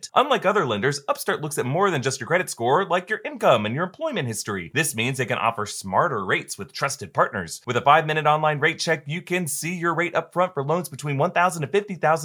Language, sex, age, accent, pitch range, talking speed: English, male, 30-49, American, 125-185 Hz, 225 wpm